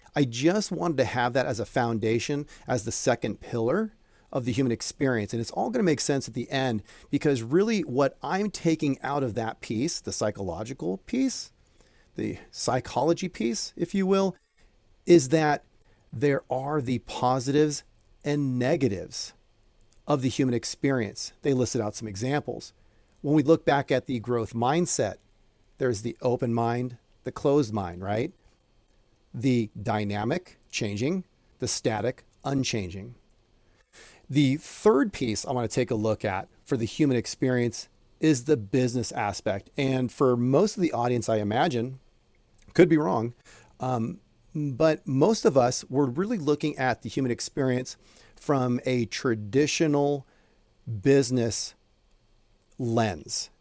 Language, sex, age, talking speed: English, male, 40-59, 145 wpm